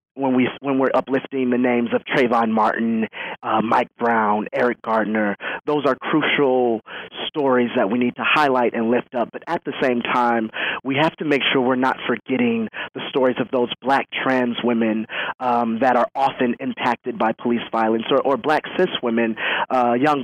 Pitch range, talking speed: 115-135 Hz, 185 wpm